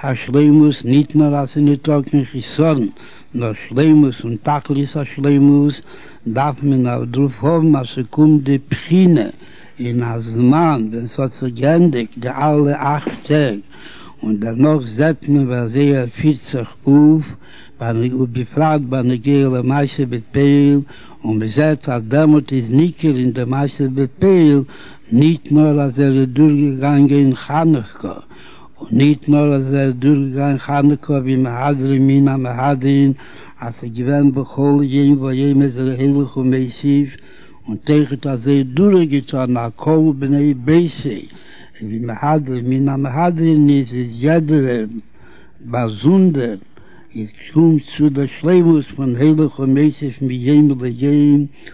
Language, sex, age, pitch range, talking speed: Hebrew, male, 60-79, 130-150 Hz, 95 wpm